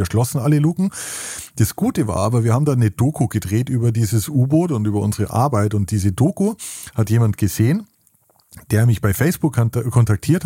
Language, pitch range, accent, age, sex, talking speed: German, 115-145 Hz, German, 30-49, male, 180 wpm